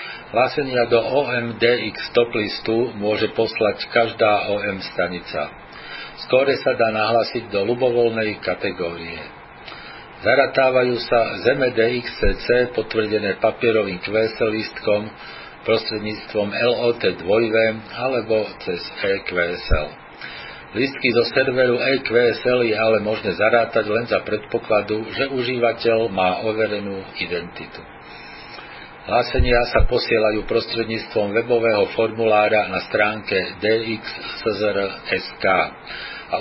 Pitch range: 105-120 Hz